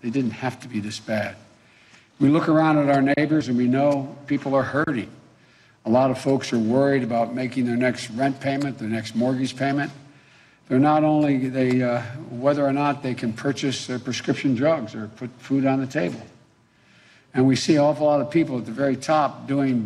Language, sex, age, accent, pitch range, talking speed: English, male, 60-79, American, 120-145 Hz, 205 wpm